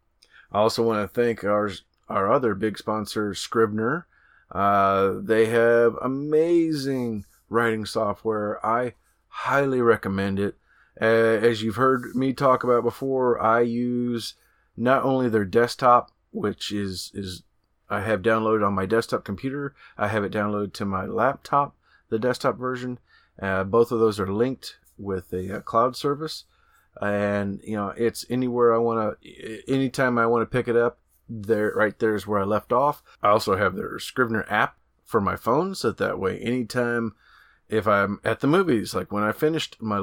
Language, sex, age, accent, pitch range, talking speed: English, male, 30-49, American, 100-120 Hz, 165 wpm